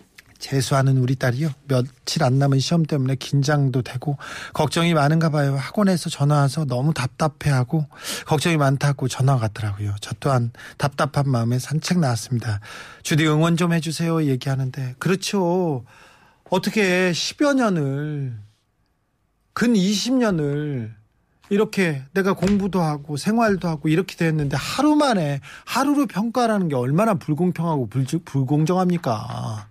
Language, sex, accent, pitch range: Korean, male, native, 135-190 Hz